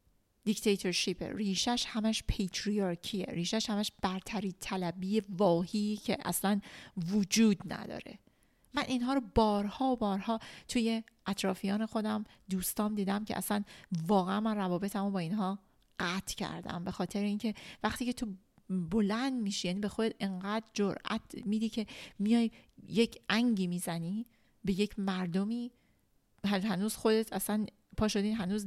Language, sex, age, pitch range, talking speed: Persian, female, 40-59, 190-220 Hz, 125 wpm